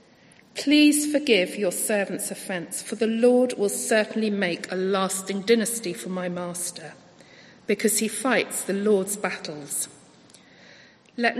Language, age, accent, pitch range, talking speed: English, 50-69, British, 190-250 Hz, 125 wpm